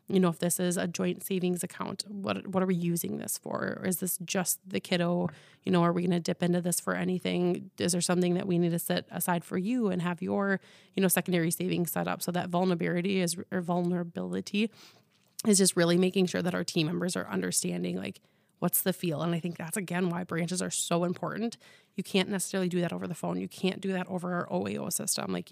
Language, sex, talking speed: English, female, 235 wpm